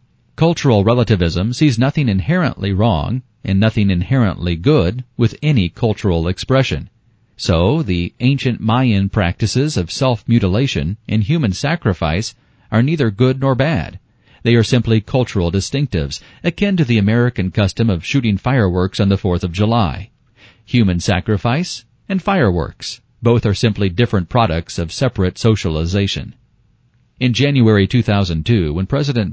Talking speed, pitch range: 130 wpm, 100-125 Hz